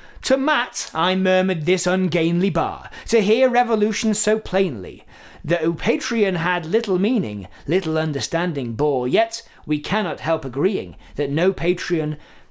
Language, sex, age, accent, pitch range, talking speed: English, male, 40-59, British, 150-230 Hz, 135 wpm